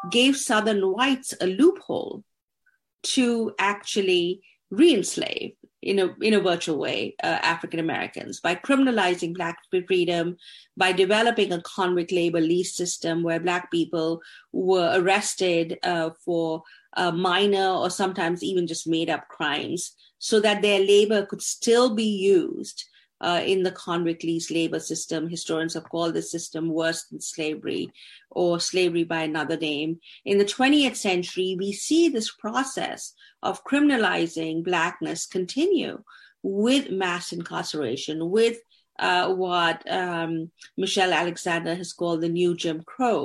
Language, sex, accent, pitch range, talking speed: English, female, Indian, 170-210 Hz, 135 wpm